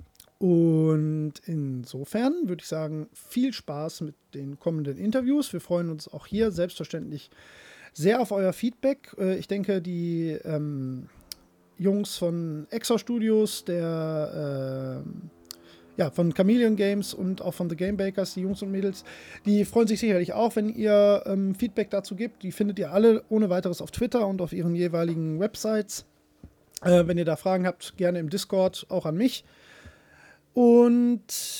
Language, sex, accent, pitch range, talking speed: German, male, German, 170-220 Hz, 155 wpm